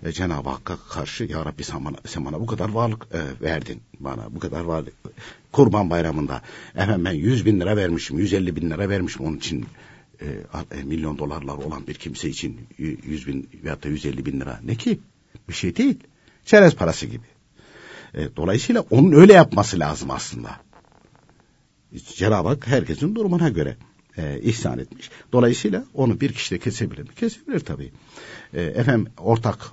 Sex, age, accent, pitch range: male, 60-79, native, 85-140 Hz